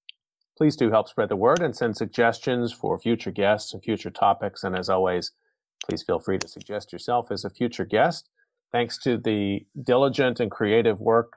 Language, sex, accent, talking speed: English, male, American, 185 wpm